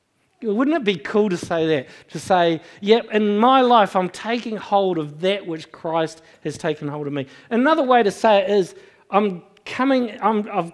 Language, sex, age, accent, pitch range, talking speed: English, male, 50-69, Australian, 160-220 Hz, 180 wpm